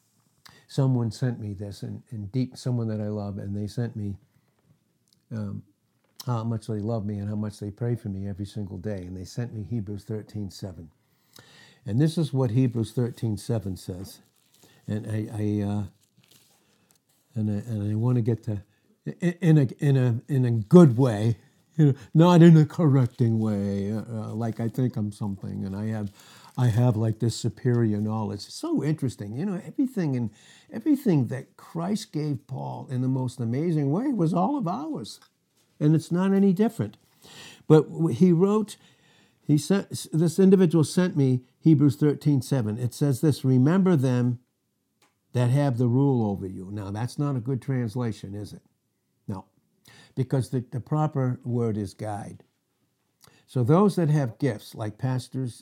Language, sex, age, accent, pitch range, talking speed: English, male, 60-79, American, 105-145 Hz, 175 wpm